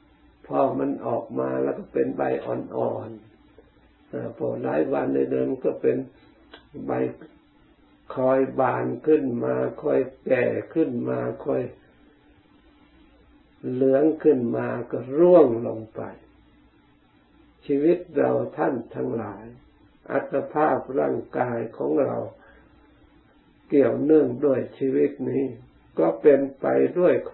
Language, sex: Thai, male